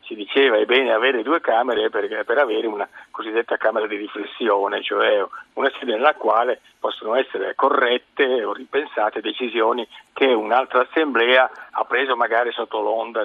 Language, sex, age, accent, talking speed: Italian, male, 50-69, native, 155 wpm